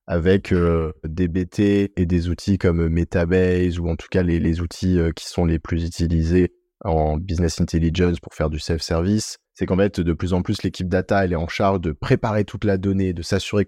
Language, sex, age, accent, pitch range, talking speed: French, male, 20-39, French, 90-115 Hz, 210 wpm